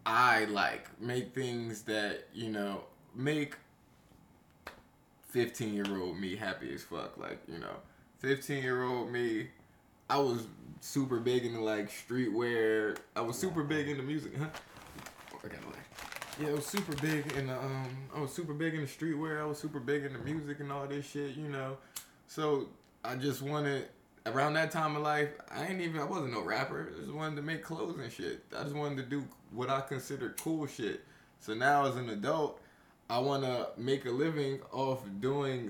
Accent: American